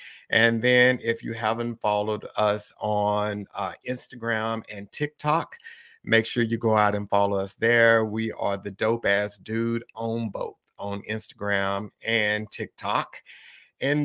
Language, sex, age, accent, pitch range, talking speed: English, male, 50-69, American, 105-120 Hz, 145 wpm